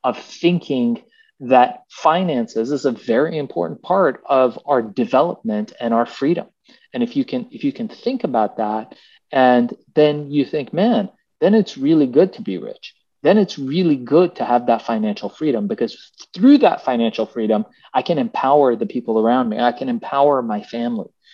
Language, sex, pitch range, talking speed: English, male, 115-180 Hz, 175 wpm